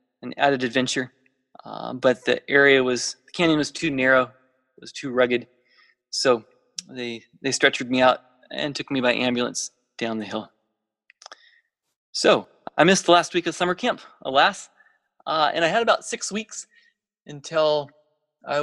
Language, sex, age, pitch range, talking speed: English, male, 20-39, 125-155 Hz, 160 wpm